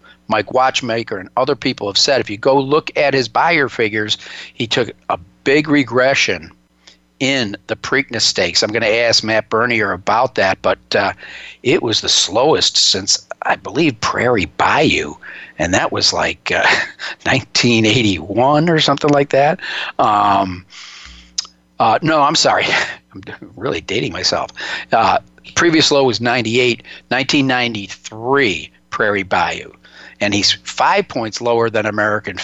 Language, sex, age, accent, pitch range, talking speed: English, male, 50-69, American, 110-145 Hz, 140 wpm